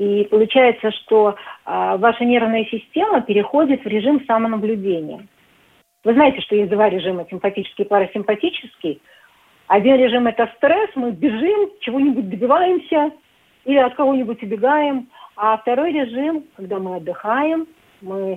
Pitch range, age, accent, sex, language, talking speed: 195-245 Hz, 40-59, native, female, Russian, 125 wpm